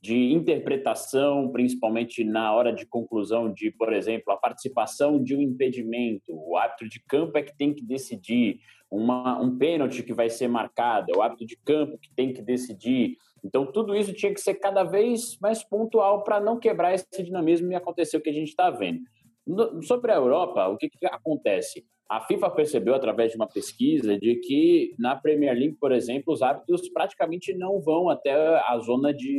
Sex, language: male, Portuguese